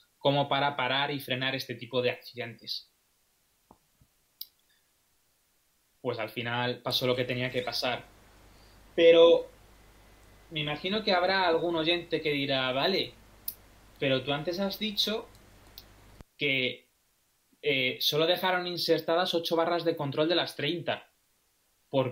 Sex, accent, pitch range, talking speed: male, Spanish, 125-175 Hz, 125 wpm